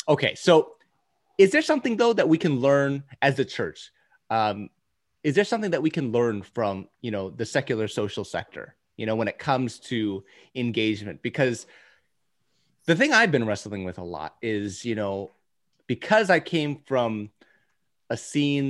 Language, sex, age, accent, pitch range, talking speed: English, male, 30-49, American, 105-140 Hz, 170 wpm